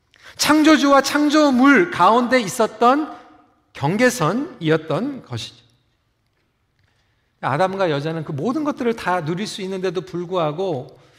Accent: native